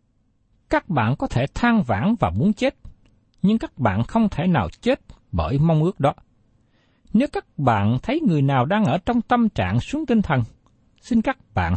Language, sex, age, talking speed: Vietnamese, male, 60-79, 190 wpm